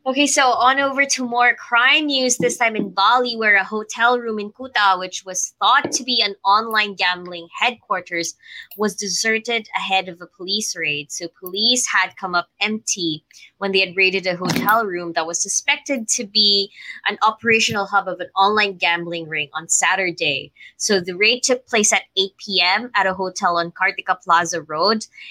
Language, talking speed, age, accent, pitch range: English, 185 wpm, 20-39, Filipino, 180-220 Hz